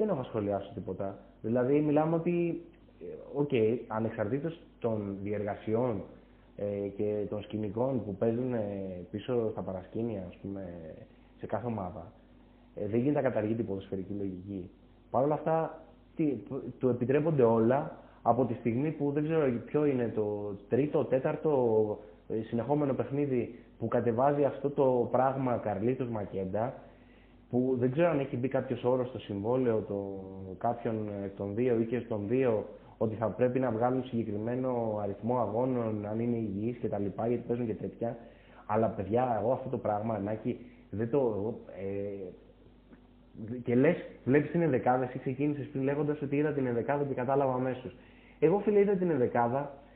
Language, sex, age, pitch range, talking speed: Greek, male, 20-39, 105-140 Hz, 155 wpm